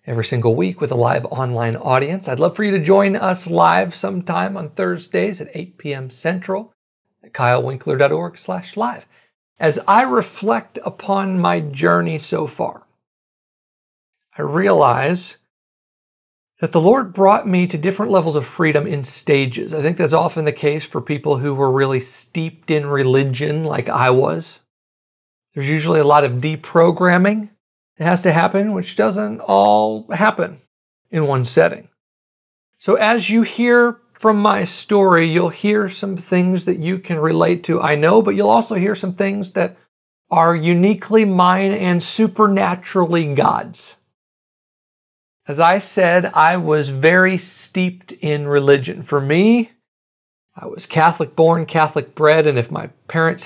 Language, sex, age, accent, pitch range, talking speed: English, male, 40-59, American, 145-190 Hz, 150 wpm